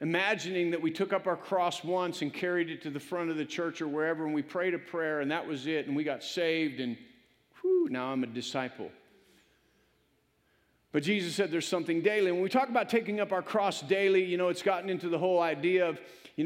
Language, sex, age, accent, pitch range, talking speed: English, male, 50-69, American, 160-195 Hz, 235 wpm